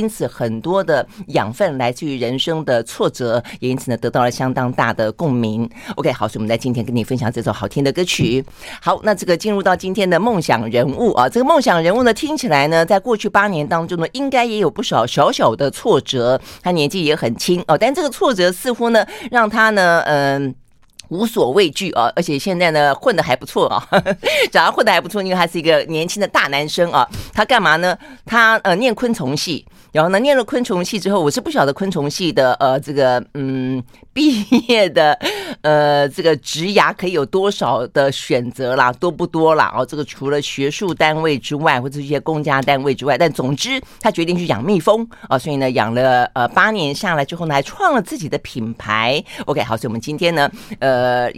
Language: Chinese